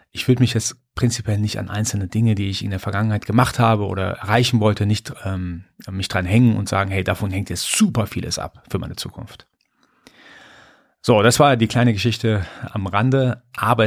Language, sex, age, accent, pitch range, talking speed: German, male, 30-49, German, 105-125 Hz, 195 wpm